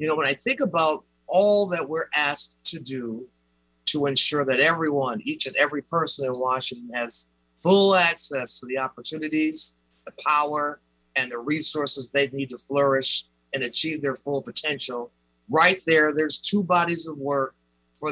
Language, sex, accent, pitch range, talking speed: English, male, American, 120-155 Hz, 165 wpm